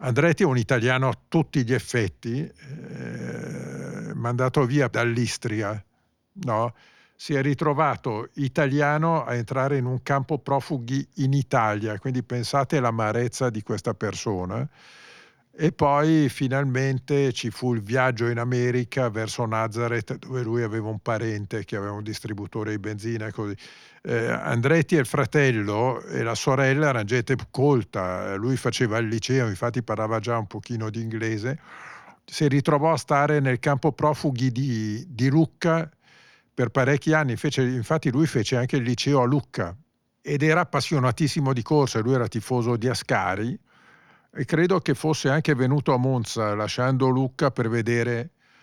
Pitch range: 110-140 Hz